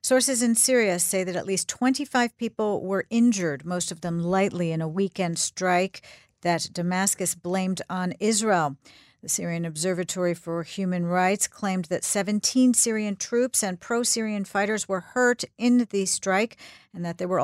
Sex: female